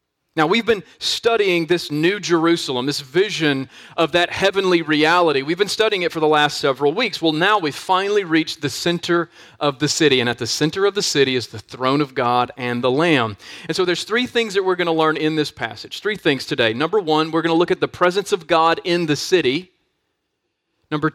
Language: English